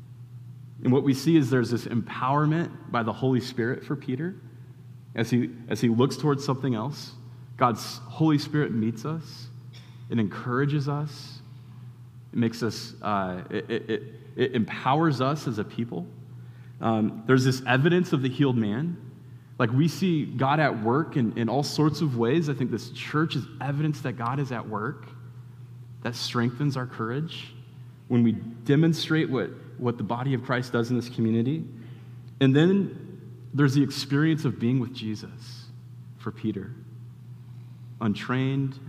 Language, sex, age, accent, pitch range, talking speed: English, male, 30-49, American, 115-130 Hz, 155 wpm